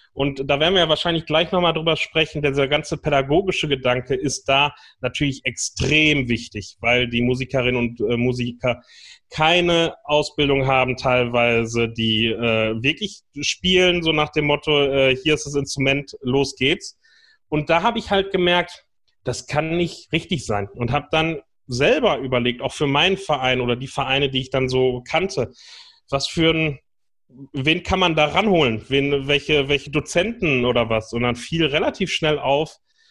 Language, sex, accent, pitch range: German, male, German, 125-160 Hz